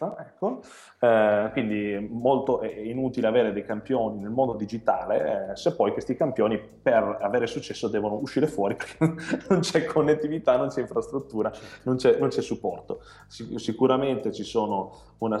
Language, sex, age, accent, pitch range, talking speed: Italian, male, 20-39, native, 100-125 Hz, 155 wpm